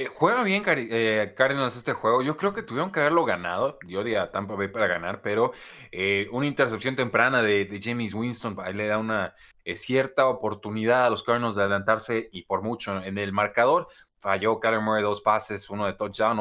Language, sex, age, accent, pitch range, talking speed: Spanish, male, 20-39, Mexican, 100-130 Hz, 200 wpm